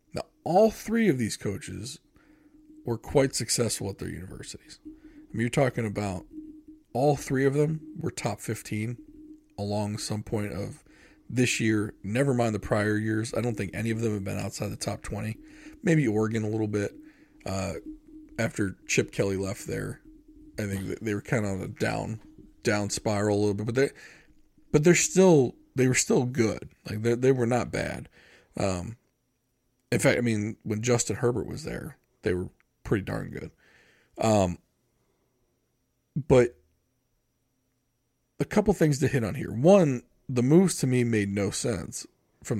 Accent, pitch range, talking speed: American, 105-145 Hz, 170 wpm